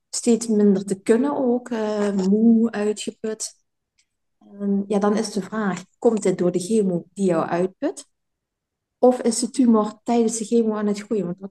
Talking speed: 170 wpm